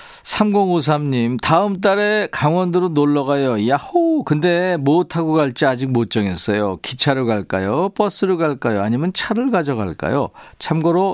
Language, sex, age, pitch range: Korean, male, 40-59, 115-185 Hz